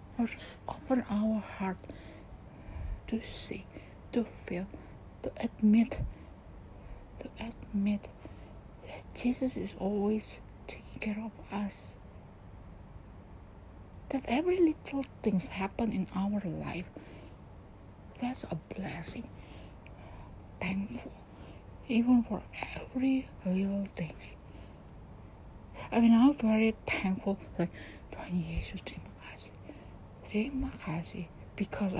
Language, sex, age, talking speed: English, female, 60-79, 90 wpm